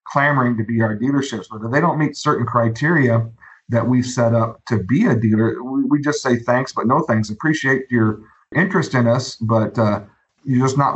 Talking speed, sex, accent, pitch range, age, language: 205 wpm, male, American, 115-135 Hz, 50-69, English